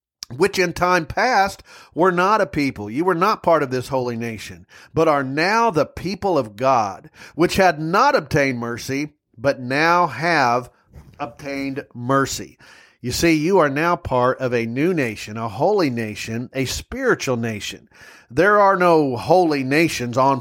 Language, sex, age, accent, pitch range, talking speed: English, male, 40-59, American, 120-145 Hz, 160 wpm